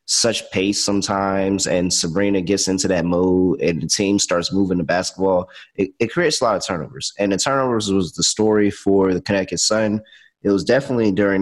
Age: 20-39